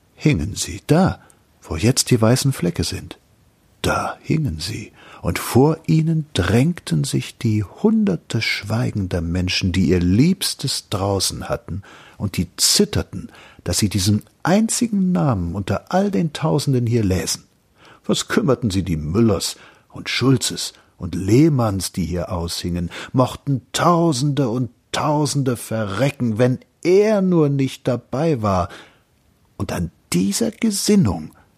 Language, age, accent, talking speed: German, 50-69, German, 125 wpm